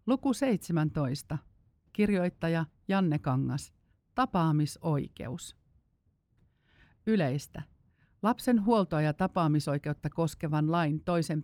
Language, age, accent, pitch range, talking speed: Finnish, 50-69, native, 150-175 Hz, 75 wpm